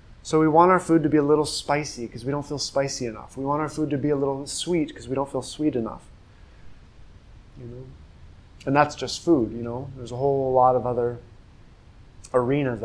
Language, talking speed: English, 215 wpm